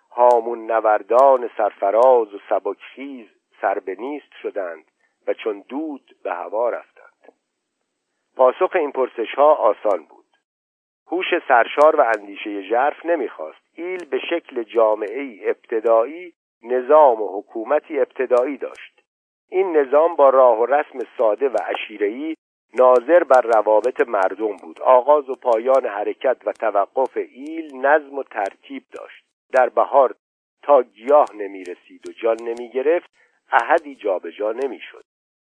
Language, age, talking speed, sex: Persian, 50-69, 120 wpm, male